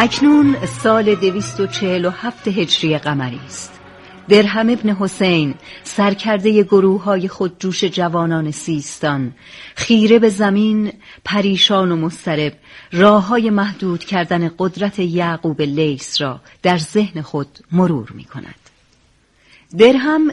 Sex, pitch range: female, 160-210 Hz